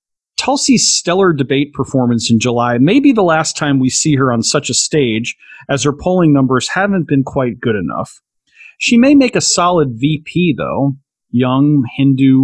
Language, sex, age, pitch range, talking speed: English, male, 40-59, 130-175 Hz, 175 wpm